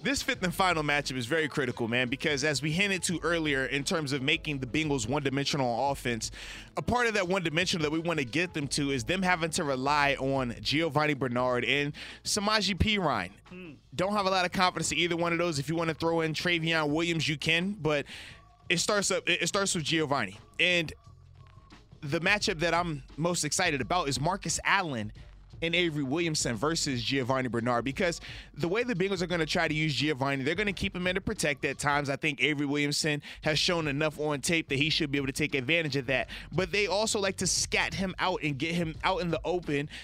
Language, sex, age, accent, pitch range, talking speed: English, male, 20-39, American, 140-175 Hz, 220 wpm